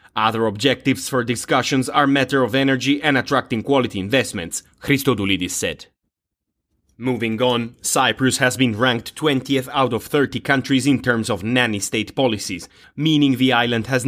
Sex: male